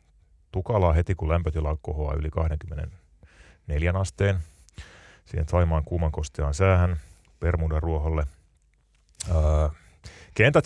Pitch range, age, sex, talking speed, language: 80-95 Hz, 30-49, male, 95 wpm, Finnish